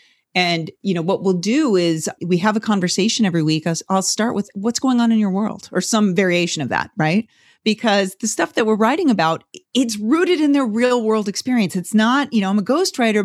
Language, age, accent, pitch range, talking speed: English, 40-59, American, 180-235 Hz, 225 wpm